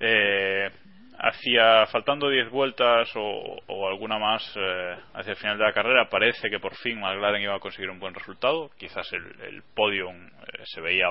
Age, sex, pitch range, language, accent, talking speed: 20-39, male, 95-120 Hz, Spanish, Spanish, 185 wpm